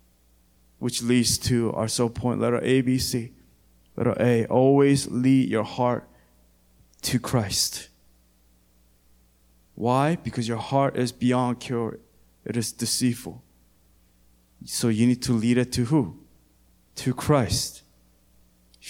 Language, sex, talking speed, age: English, male, 125 wpm, 20-39